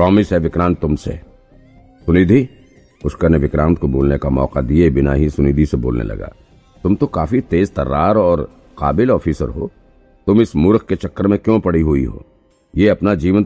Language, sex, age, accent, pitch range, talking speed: Hindi, male, 50-69, native, 75-100 Hz, 185 wpm